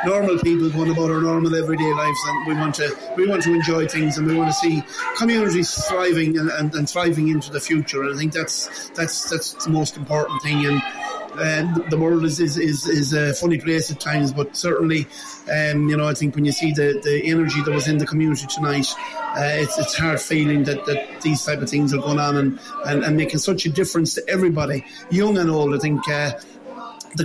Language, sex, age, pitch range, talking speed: English, male, 30-49, 145-165 Hz, 225 wpm